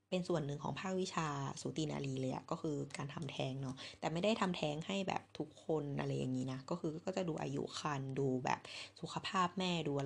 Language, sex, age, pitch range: Thai, female, 20-39, 145-190 Hz